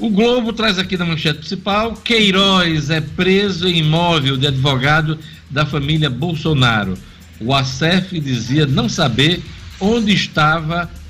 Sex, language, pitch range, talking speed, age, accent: male, Portuguese, 115-160 Hz, 130 wpm, 60-79, Brazilian